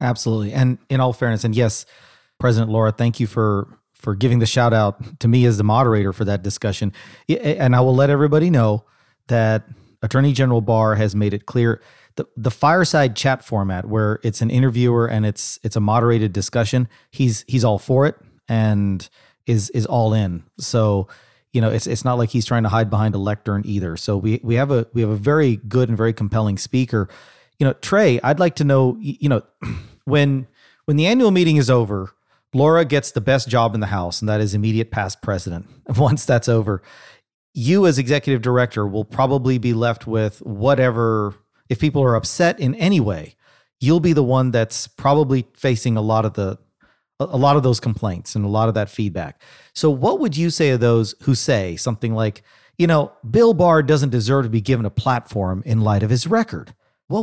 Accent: American